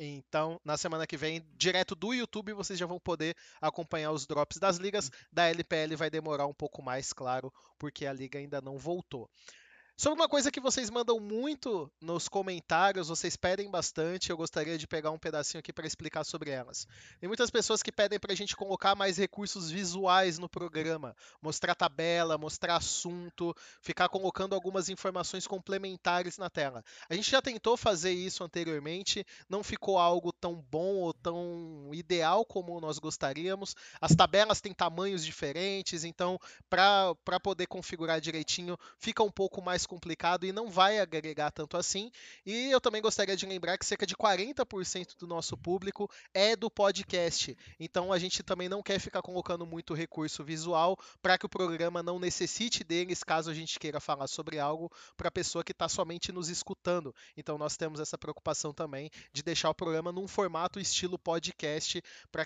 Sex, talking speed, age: male, 175 wpm, 20-39